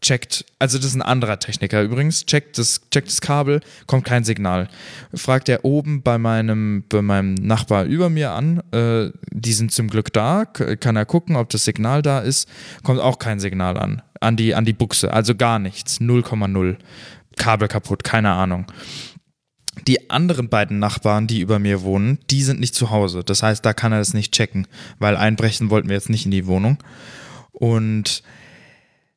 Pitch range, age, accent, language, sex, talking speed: 105-135 Hz, 20-39, German, German, male, 185 wpm